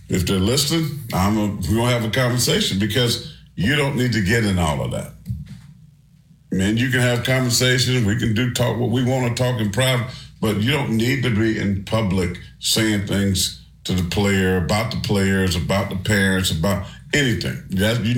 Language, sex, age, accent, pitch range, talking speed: English, male, 50-69, American, 100-140 Hz, 195 wpm